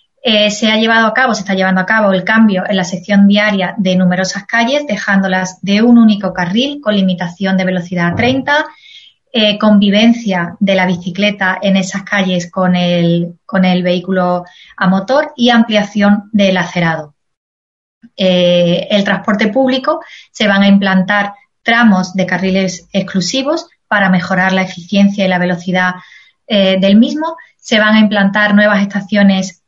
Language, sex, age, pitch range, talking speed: Spanish, female, 20-39, 185-225 Hz, 160 wpm